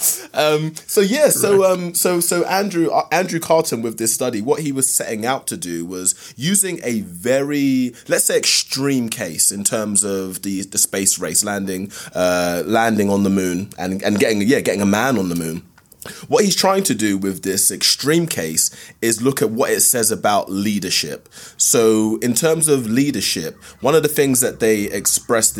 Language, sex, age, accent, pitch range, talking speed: English, male, 20-39, British, 95-140 Hz, 190 wpm